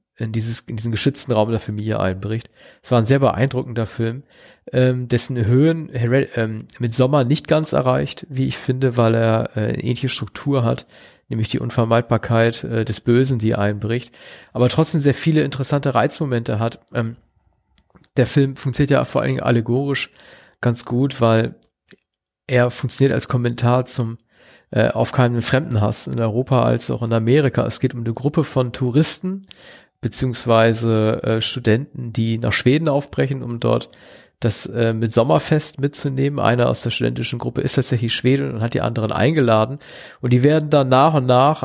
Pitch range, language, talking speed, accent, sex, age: 115-140 Hz, German, 160 wpm, German, male, 40-59